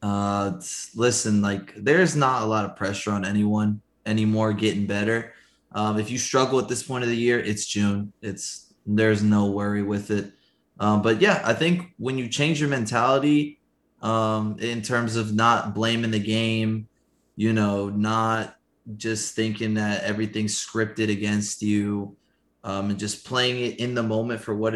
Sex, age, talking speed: male, 20-39, 170 wpm